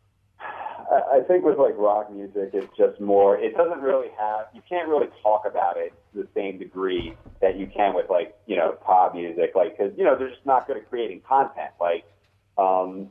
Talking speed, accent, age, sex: 205 wpm, American, 30-49, male